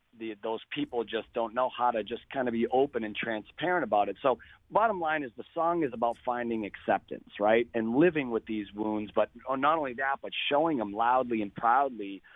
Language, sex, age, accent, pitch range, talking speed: English, male, 40-59, American, 105-130 Hz, 205 wpm